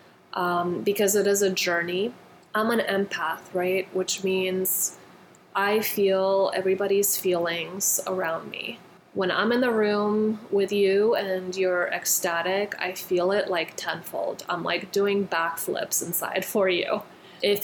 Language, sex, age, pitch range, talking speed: English, female, 20-39, 180-200 Hz, 140 wpm